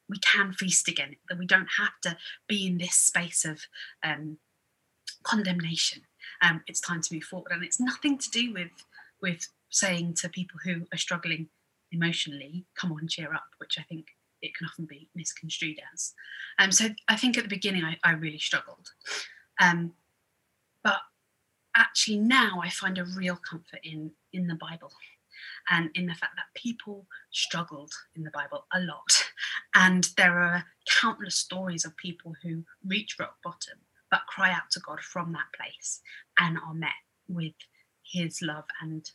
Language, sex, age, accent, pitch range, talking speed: English, female, 30-49, British, 165-190 Hz, 175 wpm